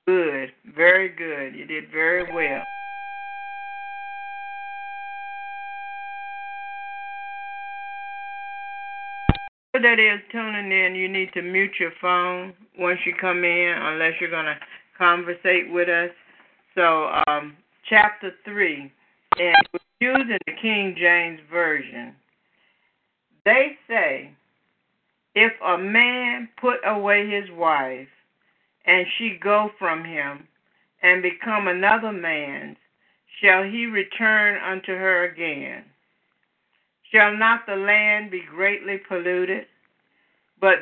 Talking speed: 105 wpm